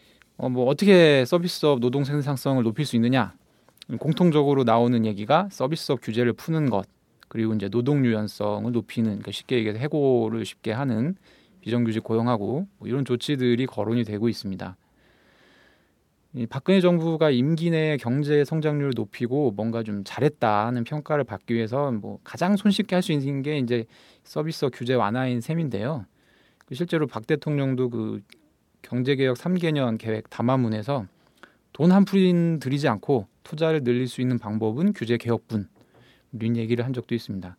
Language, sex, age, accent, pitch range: Korean, male, 20-39, native, 115-150 Hz